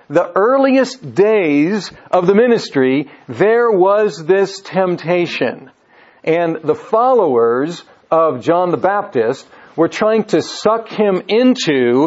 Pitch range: 150-215 Hz